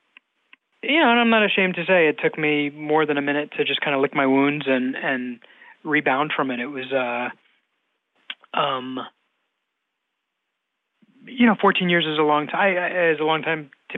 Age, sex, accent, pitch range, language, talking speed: 20-39, male, American, 130-165 Hz, English, 190 wpm